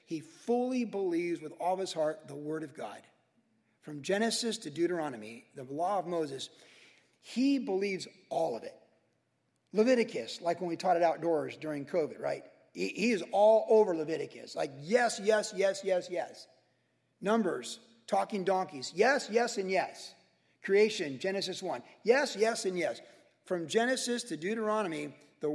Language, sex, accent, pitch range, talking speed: English, male, American, 160-215 Hz, 155 wpm